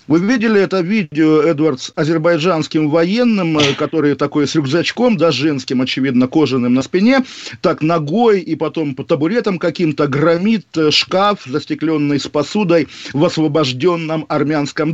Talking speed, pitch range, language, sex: 135 wpm, 150-190 Hz, Russian, male